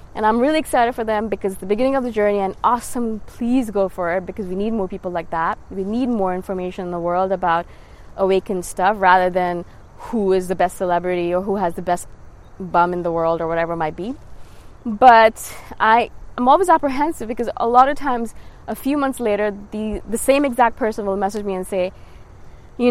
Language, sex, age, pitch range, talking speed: English, female, 20-39, 185-255 Hz, 210 wpm